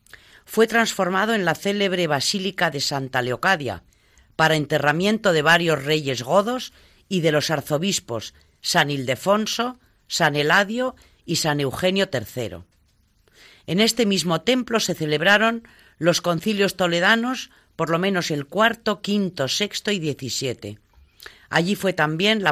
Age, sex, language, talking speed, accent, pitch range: 40-59, female, Spanish, 130 wpm, Spanish, 140-200 Hz